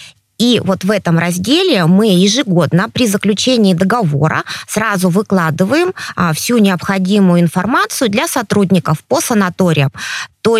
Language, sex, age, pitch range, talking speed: Russian, female, 20-39, 175-240 Hz, 115 wpm